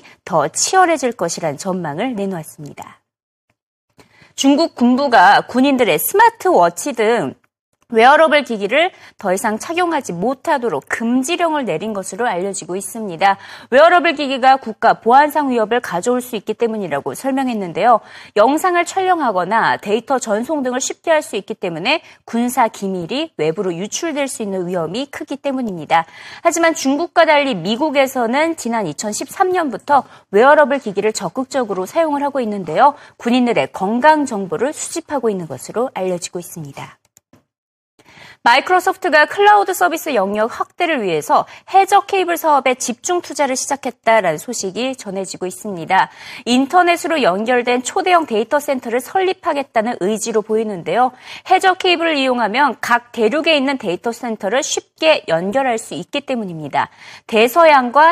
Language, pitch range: Korean, 210-315 Hz